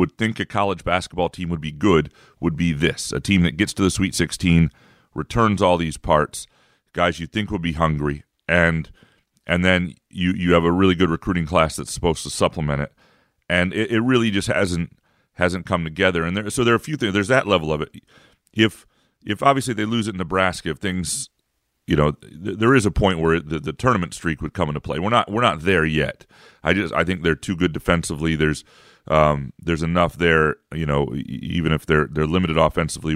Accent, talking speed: American, 220 wpm